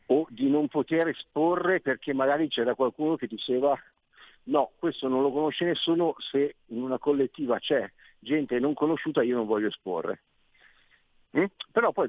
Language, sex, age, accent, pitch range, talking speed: Italian, male, 50-69, native, 110-155 Hz, 160 wpm